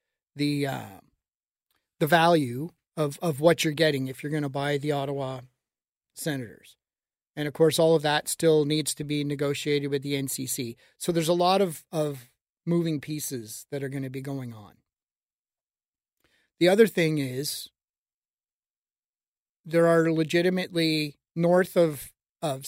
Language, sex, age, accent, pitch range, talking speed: English, male, 40-59, American, 145-180 Hz, 150 wpm